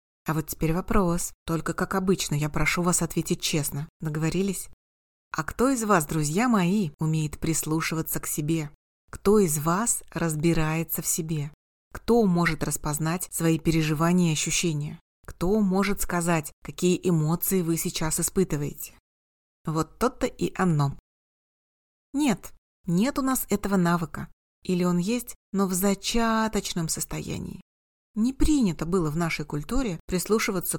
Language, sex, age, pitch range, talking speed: Russian, female, 30-49, 155-195 Hz, 135 wpm